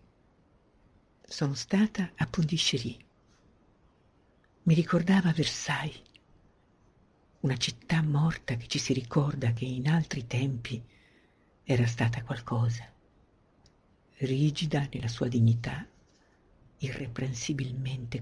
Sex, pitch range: female, 115-145 Hz